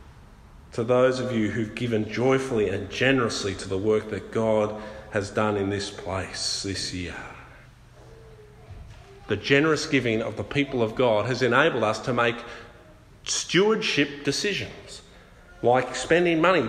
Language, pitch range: English, 110-170 Hz